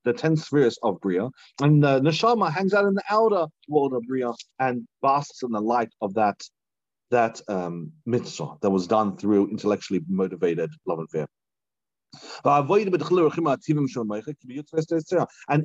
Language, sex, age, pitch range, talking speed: English, male, 30-49, 125-170 Hz, 140 wpm